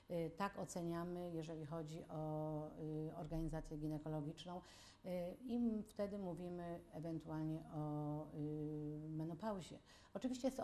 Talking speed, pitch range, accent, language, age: 90 wpm, 155-175 Hz, native, Polish, 50-69